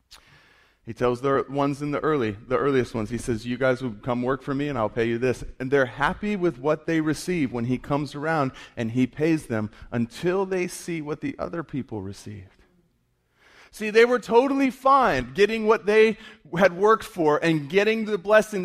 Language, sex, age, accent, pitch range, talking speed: English, male, 30-49, American, 150-235 Hz, 200 wpm